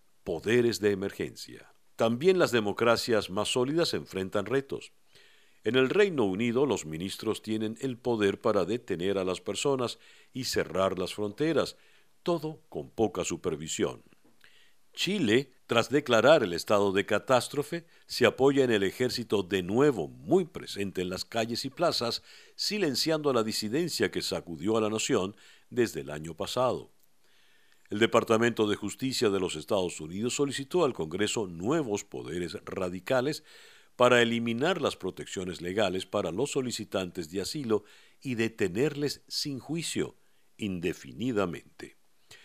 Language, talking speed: Spanish, 135 wpm